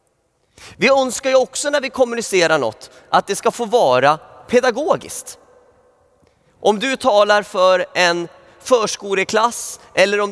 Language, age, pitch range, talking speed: Swedish, 30-49, 180-245 Hz, 130 wpm